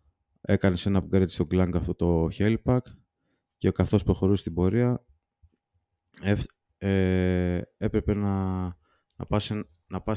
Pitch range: 85-100 Hz